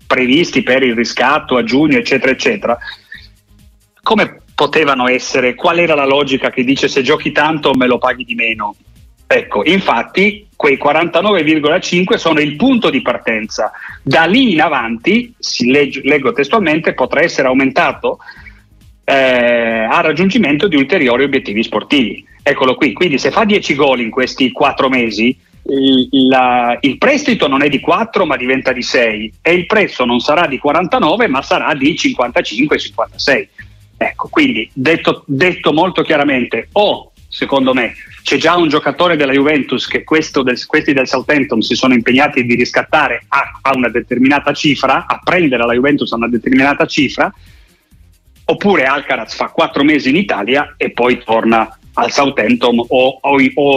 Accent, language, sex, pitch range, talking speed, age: native, Italian, male, 120-155 Hz, 155 wpm, 40-59